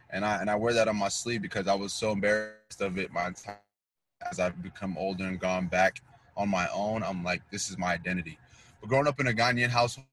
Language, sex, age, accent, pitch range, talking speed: English, male, 20-39, American, 100-125 Hz, 235 wpm